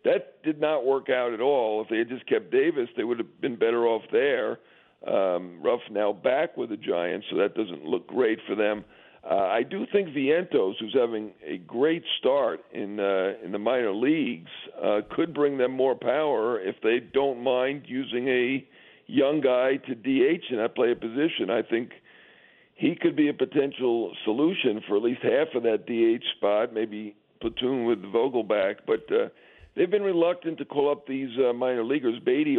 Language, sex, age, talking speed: English, male, 50-69, 195 wpm